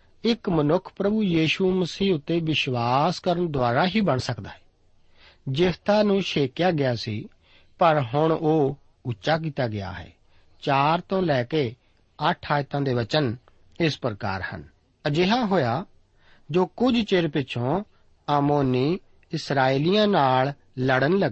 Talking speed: 70 wpm